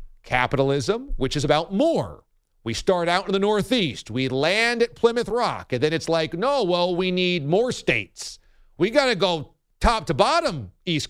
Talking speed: 185 wpm